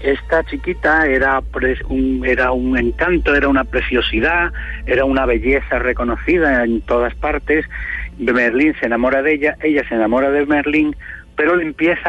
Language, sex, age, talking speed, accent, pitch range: English, male, 60-79, 145 wpm, Spanish, 120-155 Hz